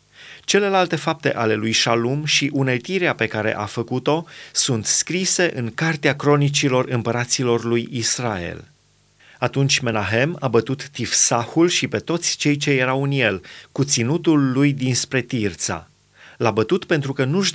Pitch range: 120-150 Hz